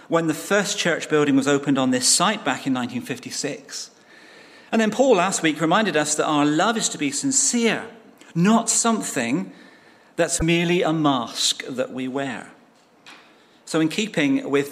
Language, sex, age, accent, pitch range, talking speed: English, male, 40-59, British, 145-205 Hz, 165 wpm